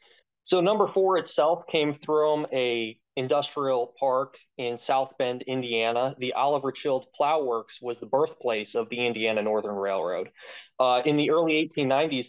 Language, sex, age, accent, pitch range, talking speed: English, male, 20-39, American, 120-150 Hz, 150 wpm